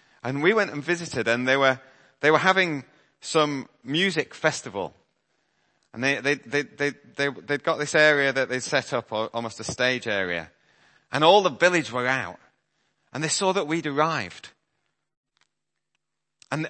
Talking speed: 165 wpm